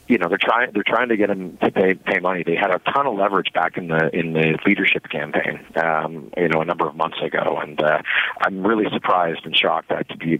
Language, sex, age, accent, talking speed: English, male, 40-59, American, 260 wpm